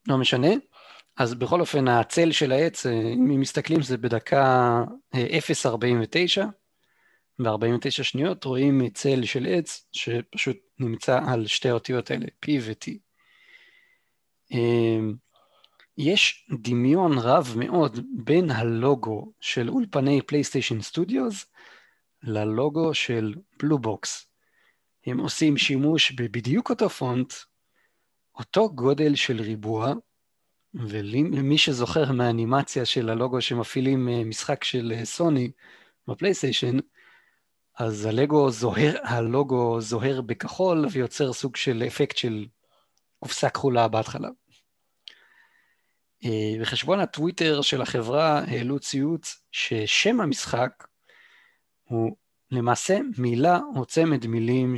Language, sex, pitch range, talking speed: Hebrew, male, 120-155 Hz, 95 wpm